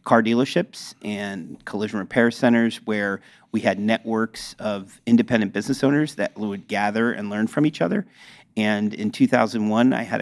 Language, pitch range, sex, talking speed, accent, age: English, 105-120 Hz, male, 160 wpm, American, 40-59